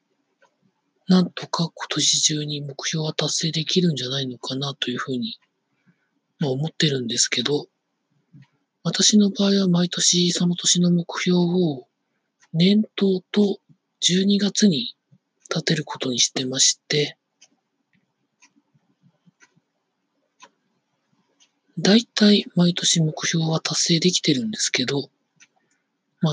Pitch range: 140-185 Hz